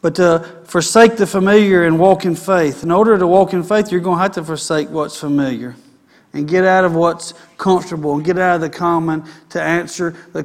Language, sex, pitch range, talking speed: English, male, 180-230 Hz, 220 wpm